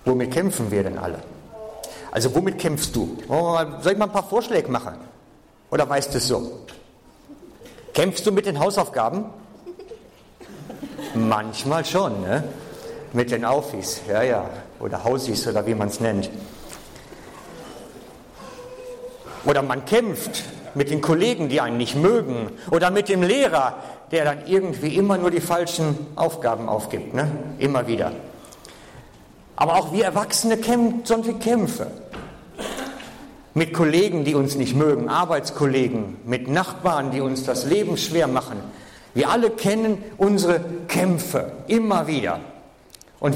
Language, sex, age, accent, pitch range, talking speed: German, male, 50-69, German, 125-195 Hz, 135 wpm